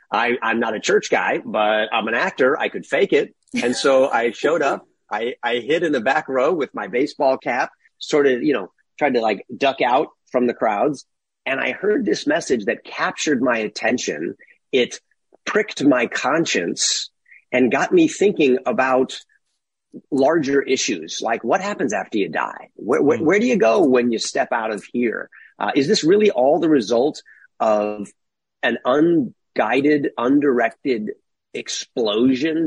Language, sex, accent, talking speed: English, male, American, 170 wpm